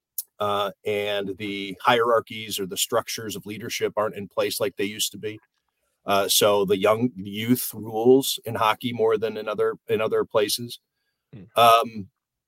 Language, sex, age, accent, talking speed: English, male, 40-59, American, 155 wpm